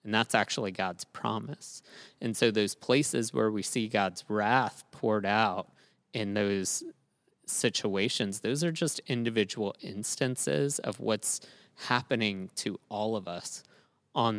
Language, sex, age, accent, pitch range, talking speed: English, male, 20-39, American, 105-130 Hz, 135 wpm